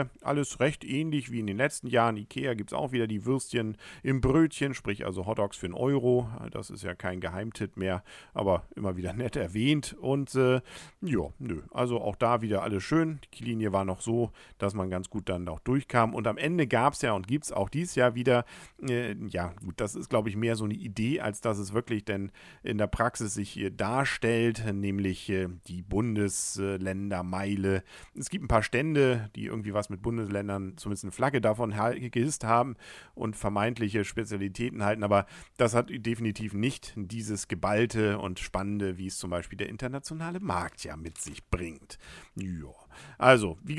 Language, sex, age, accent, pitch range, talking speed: German, male, 40-59, German, 100-130 Hz, 190 wpm